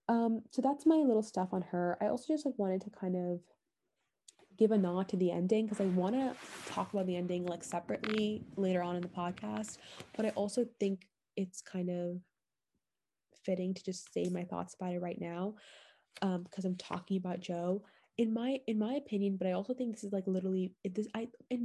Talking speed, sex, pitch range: 210 wpm, female, 180-215 Hz